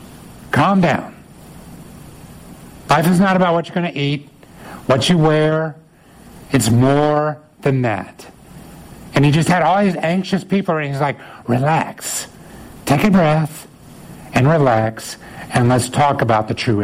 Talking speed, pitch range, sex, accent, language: 145 wpm, 130-160 Hz, male, American, English